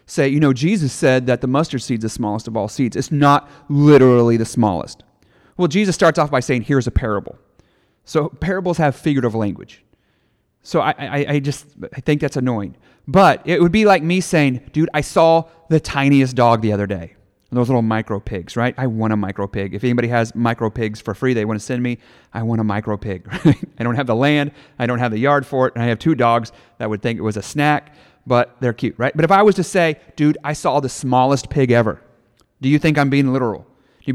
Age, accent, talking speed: 30-49, American, 235 wpm